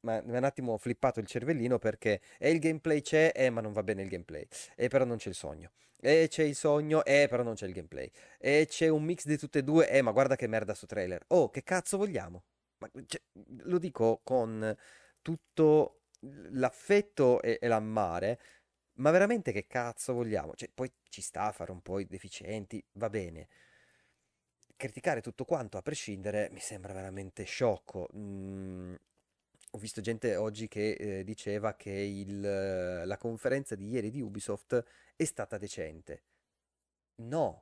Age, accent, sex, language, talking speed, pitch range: 30-49, native, male, Italian, 175 wpm, 105-150 Hz